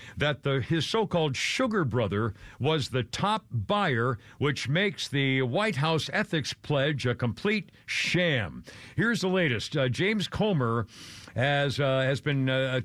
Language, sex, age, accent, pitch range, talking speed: English, male, 60-79, American, 125-175 Hz, 140 wpm